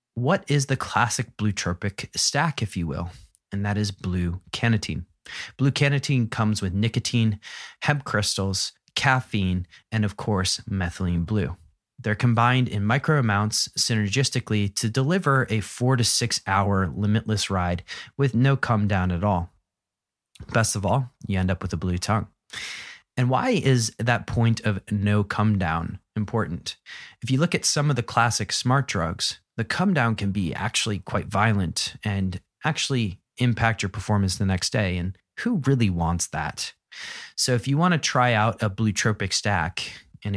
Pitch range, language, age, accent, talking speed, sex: 95-125 Hz, English, 30-49, American, 165 wpm, male